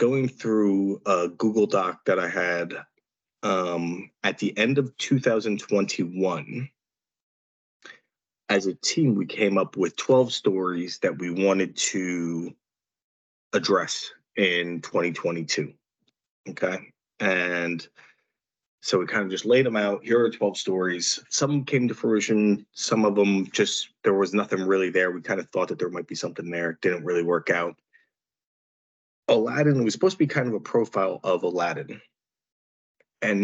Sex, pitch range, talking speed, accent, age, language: male, 90-110 Hz, 150 wpm, American, 30-49, English